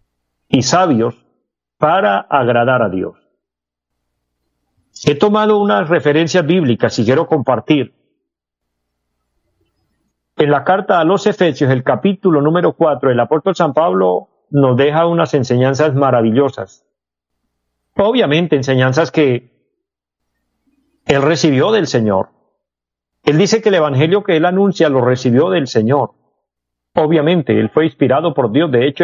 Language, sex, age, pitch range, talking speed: Spanish, male, 50-69, 115-170 Hz, 125 wpm